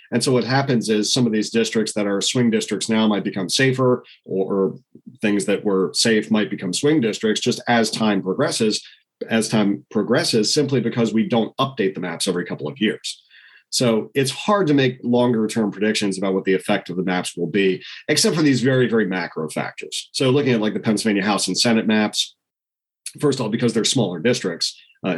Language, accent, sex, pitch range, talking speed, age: English, American, male, 100-125 Hz, 205 wpm, 40-59